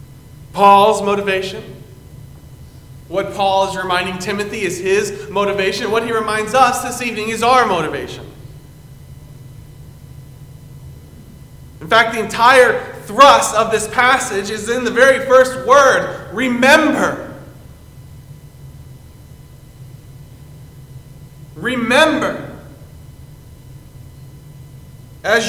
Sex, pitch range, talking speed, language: male, 190-270 Hz, 85 wpm, English